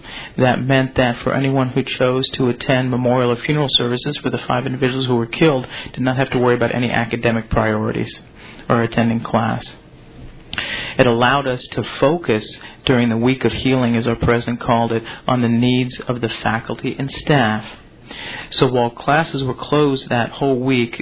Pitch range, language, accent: 115-130 Hz, English, American